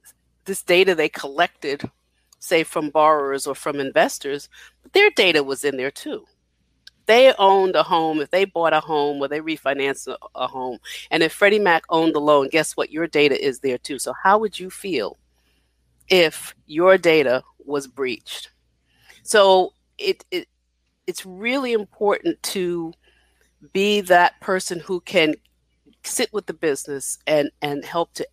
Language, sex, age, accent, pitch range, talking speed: English, female, 40-59, American, 145-190 Hz, 155 wpm